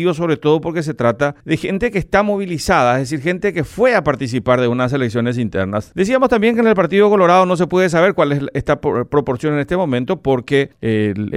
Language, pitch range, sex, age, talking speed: Spanish, 125-185 Hz, male, 40-59, 215 wpm